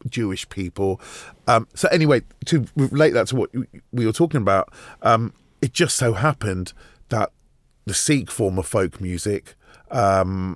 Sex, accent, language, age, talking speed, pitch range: male, British, English, 30-49, 155 wpm, 105-145 Hz